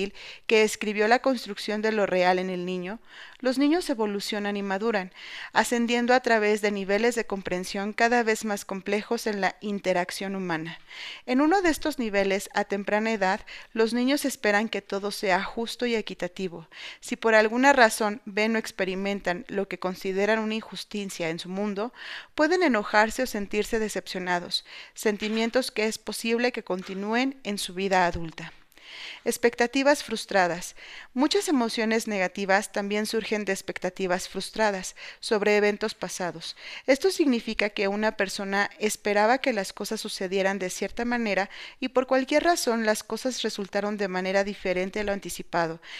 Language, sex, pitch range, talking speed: Spanish, female, 195-230 Hz, 150 wpm